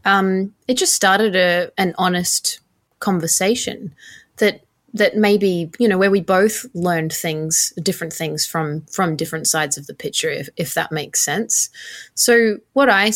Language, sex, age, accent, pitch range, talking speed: English, female, 20-39, Australian, 165-225 Hz, 160 wpm